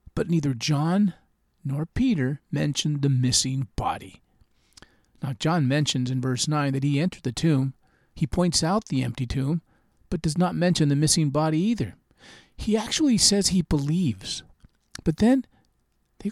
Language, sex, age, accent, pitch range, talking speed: English, male, 40-59, American, 140-180 Hz, 155 wpm